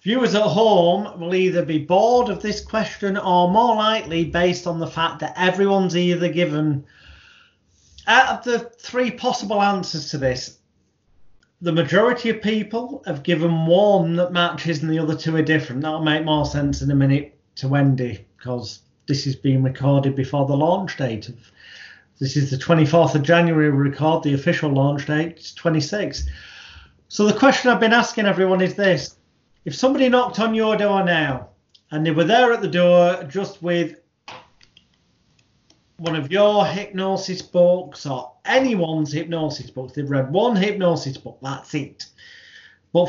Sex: male